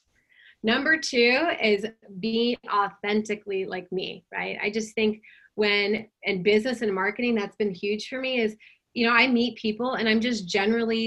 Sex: female